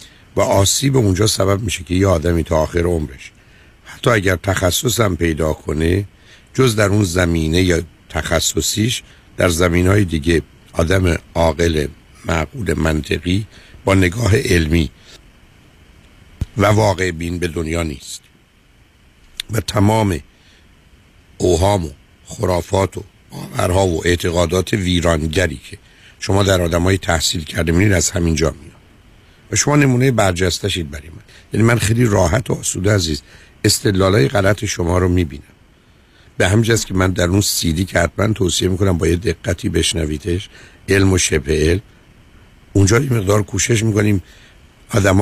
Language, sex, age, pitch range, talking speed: Persian, male, 60-79, 85-105 Hz, 135 wpm